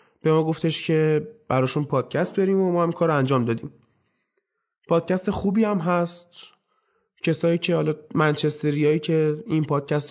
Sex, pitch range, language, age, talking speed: male, 135-175 Hz, Persian, 20-39, 140 wpm